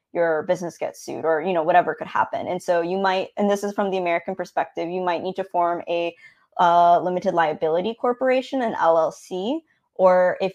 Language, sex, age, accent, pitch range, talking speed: English, female, 20-39, American, 175-220 Hz, 200 wpm